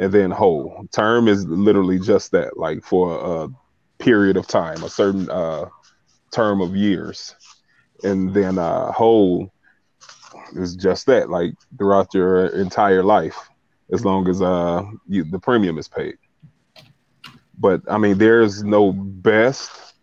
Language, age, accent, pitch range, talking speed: English, 20-39, American, 95-115 Hz, 140 wpm